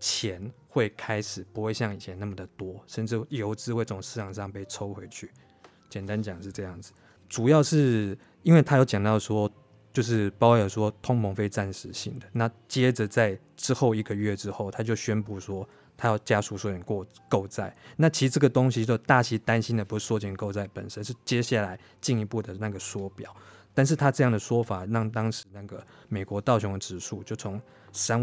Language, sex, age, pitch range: Chinese, male, 20-39, 100-115 Hz